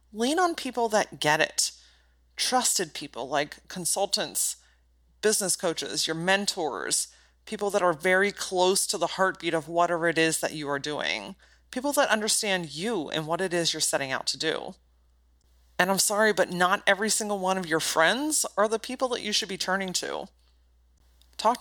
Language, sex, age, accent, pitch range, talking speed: English, female, 30-49, American, 165-230 Hz, 180 wpm